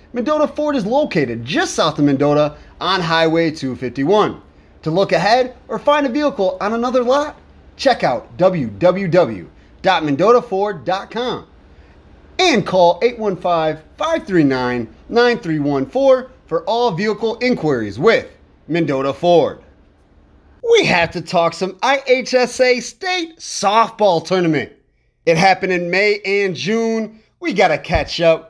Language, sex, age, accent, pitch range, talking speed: English, male, 30-49, American, 160-230 Hz, 110 wpm